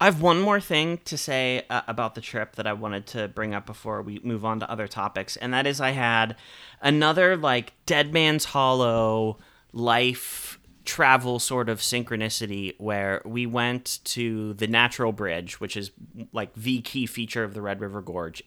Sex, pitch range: male, 110-135 Hz